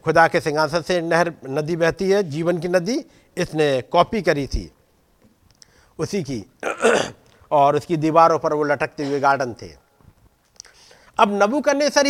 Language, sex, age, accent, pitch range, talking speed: Hindi, male, 50-69, native, 140-200 Hz, 140 wpm